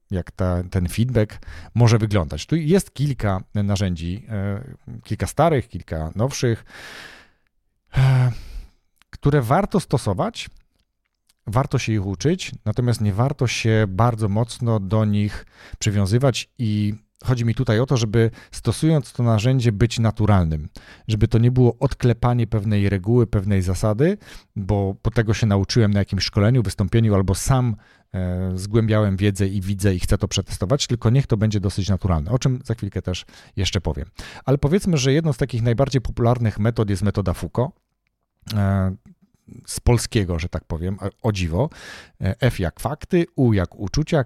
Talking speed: 145 wpm